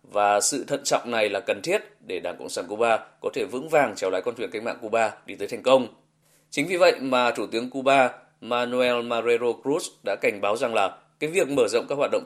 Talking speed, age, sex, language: 245 wpm, 20-39, male, Vietnamese